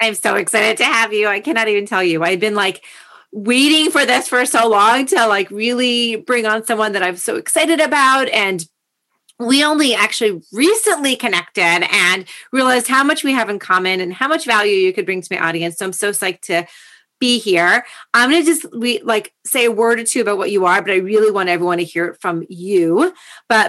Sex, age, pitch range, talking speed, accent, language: female, 30-49, 185-250 Hz, 220 wpm, American, English